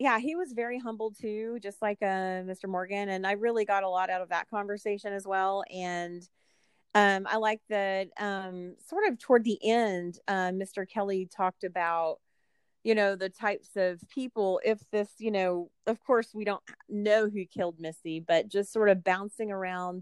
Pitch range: 180-210 Hz